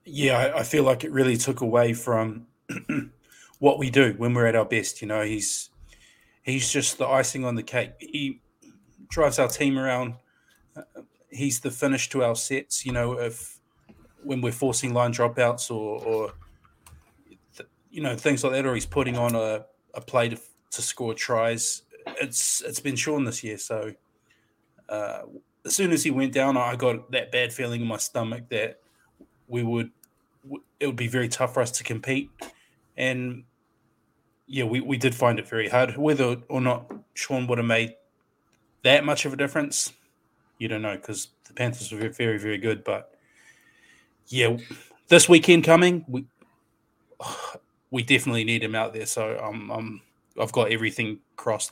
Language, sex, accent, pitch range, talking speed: English, male, Australian, 115-135 Hz, 175 wpm